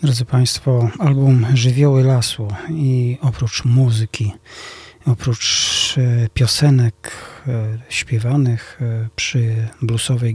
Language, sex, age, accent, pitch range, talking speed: Polish, male, 40-59, native, 110-135 Hz, 75 wpm